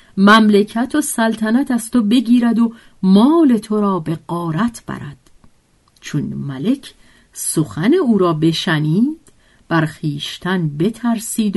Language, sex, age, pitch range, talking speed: Persian, female, 50-69, 165-240 Hz, 115 wpm